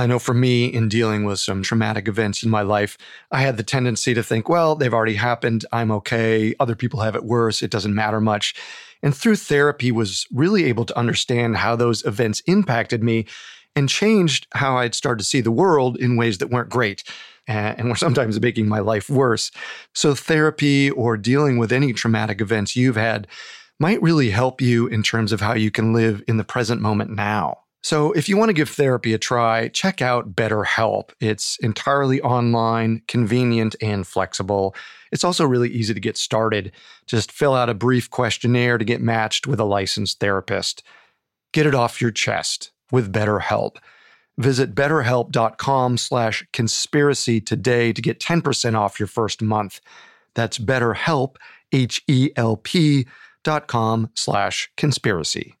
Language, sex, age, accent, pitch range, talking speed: English, male, 30-49, American, 110-130 Hz, 170 wpm